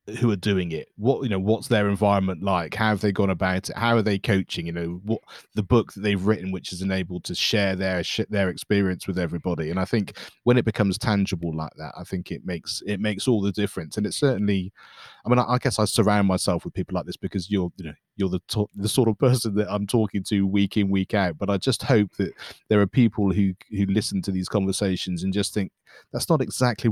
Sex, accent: male, British